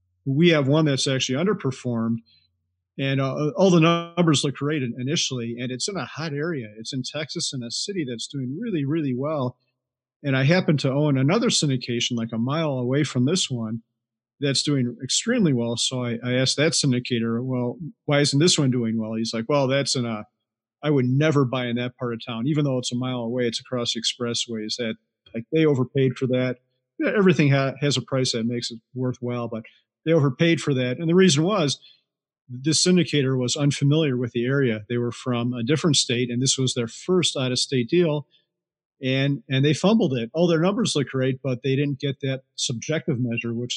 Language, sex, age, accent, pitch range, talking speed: English, male, 40-59, American, 120-150 Hz, 205 wpm